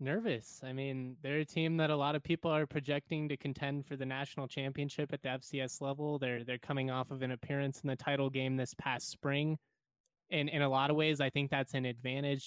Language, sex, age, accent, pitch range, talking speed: English, male, 20-39, American, 130-145 Hz, 230 wpm